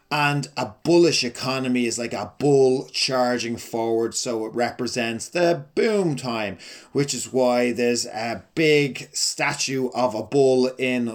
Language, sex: English, male